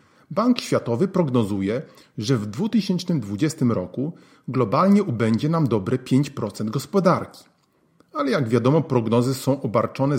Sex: male